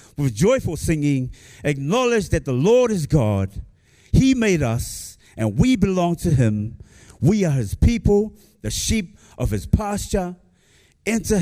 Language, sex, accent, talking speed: English, male, American, 140 wpm